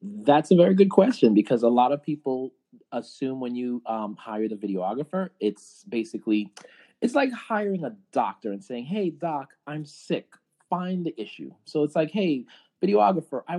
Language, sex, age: English, male, 30-49